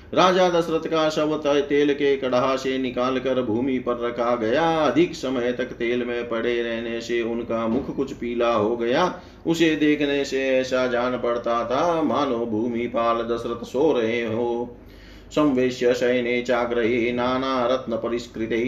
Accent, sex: native, male